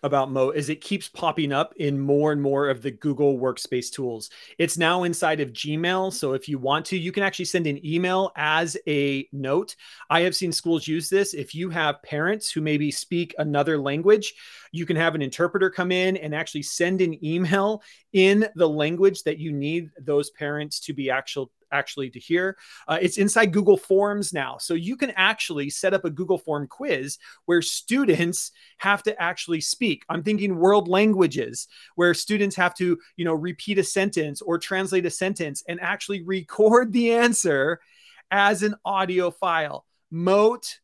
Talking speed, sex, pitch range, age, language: 185 wpm, male, 150-190 Hz, 30-49, English